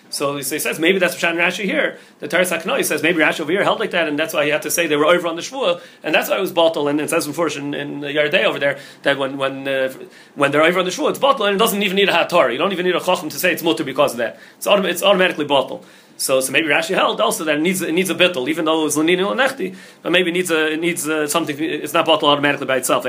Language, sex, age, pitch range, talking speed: English, male, 30-49, 140-180 Hz, 300 wpm